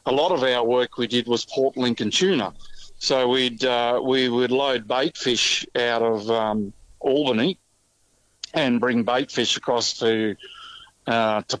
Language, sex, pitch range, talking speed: English, male, 110-130 Hz, 160 wpm